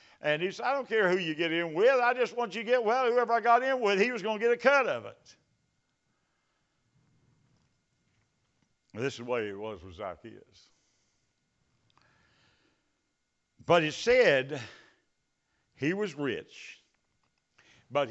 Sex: male